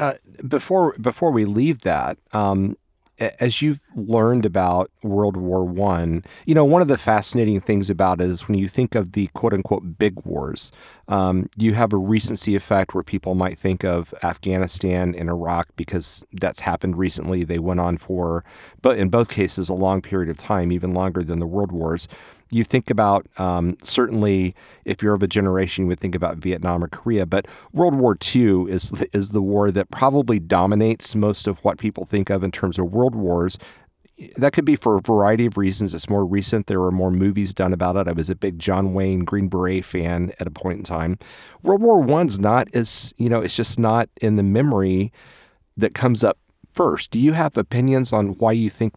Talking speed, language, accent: 205 wpm, English, American